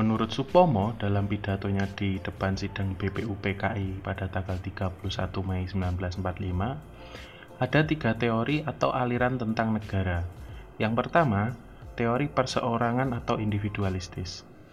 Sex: male